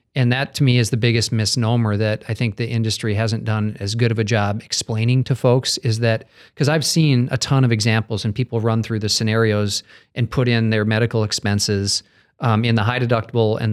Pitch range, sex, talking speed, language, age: 110-130 Hz, male, 220 wpm, English, 40-59